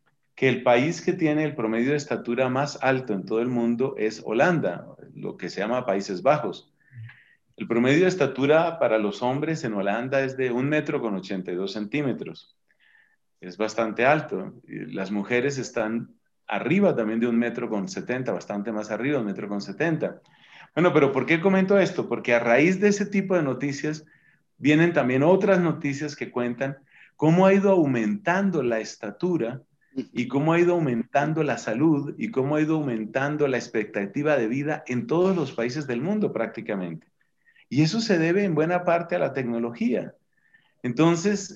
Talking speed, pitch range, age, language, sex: 170 wpm, 115-160 Hz, 40-59, Spanish, male